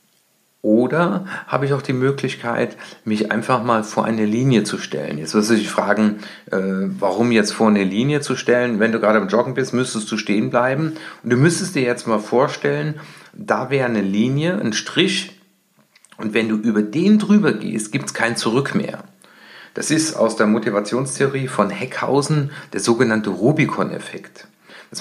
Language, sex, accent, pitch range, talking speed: German, male, German, 110-155 Hz, 175 wpm